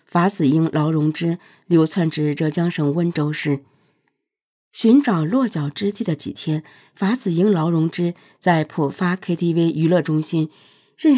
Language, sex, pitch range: Chinese, female, 155-210 Hz